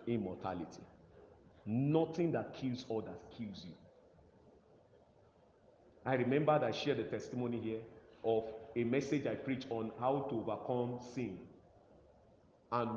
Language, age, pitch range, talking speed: English, 40-59, 115-170 Hz, 120 wpm